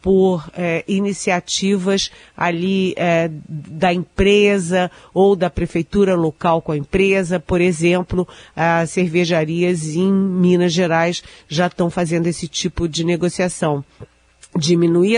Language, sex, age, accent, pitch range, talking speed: Portuguese, female, 40-59, Brazilian, 160-190 Hz, 115 wpm